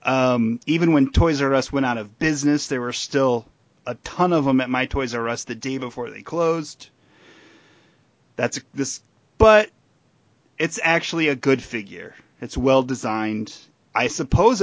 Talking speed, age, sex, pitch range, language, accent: 165 wpm, 30-49, male, 120-145 Hz, English, American